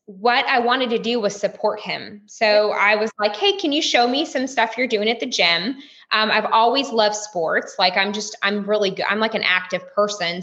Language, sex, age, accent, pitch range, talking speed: English, female, 20-39, American, 200-245 Hz, 230 wpm